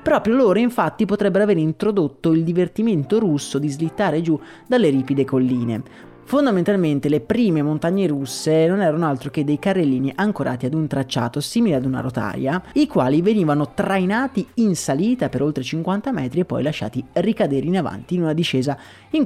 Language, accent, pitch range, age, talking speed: Italian, native, 135-200 Hz, 30-49, 170 wpm